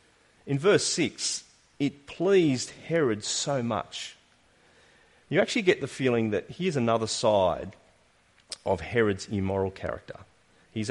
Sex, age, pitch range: male, 40-59, 105-145 Hz